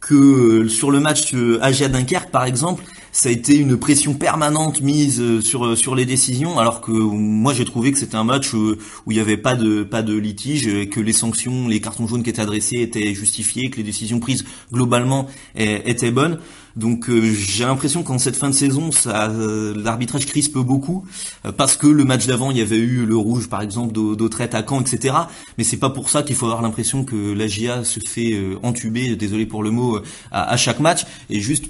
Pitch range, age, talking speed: 110-135 Hz, 30-49, 210 wpm